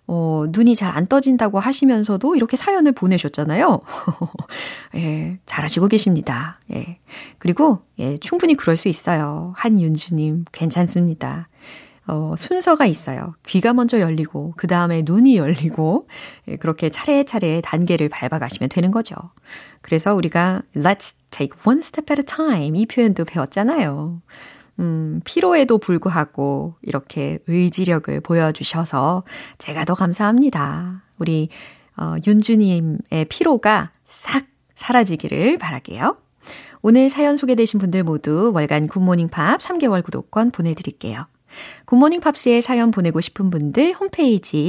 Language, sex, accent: Korean, female, native